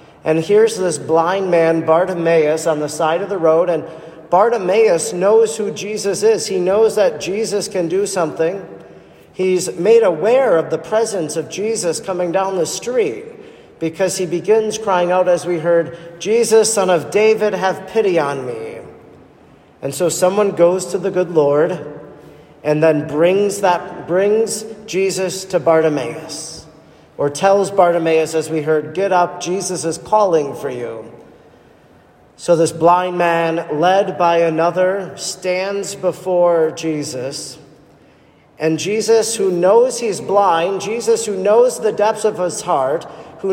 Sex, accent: male, American